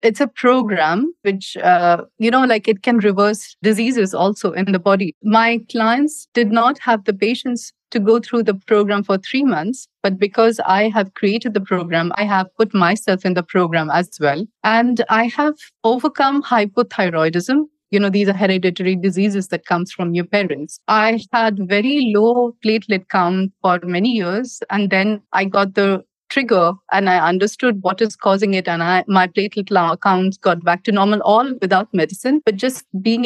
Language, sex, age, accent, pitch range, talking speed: English, female, 30-49, Indian, 190-245 Hz, 180 wpm